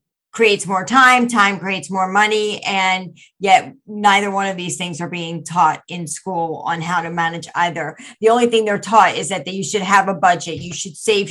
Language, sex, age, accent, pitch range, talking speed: English, female, 50-69, American, 175-215 Hz, 205 wpm